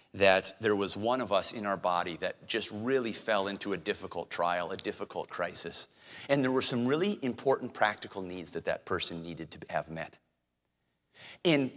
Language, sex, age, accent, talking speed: English, male, 30-49, American, 185 wpm